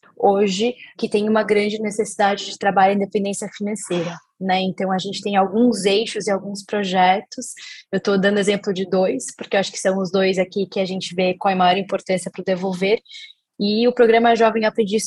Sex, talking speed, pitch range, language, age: female, 205 wpm, 200-225 Hz, Portuguese, 10-29